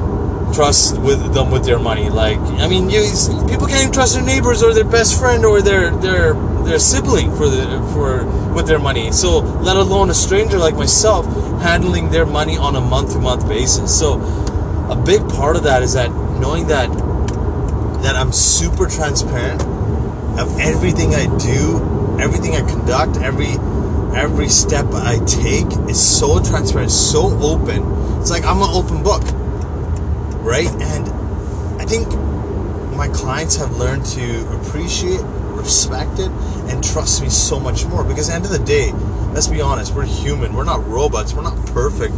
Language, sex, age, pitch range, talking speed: English, male, 30-49, 80-115 Hz, 170 wpm